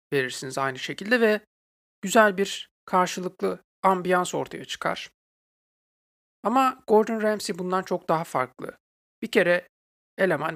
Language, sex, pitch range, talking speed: Turkish, male, 150-185 Hz, 115 wpm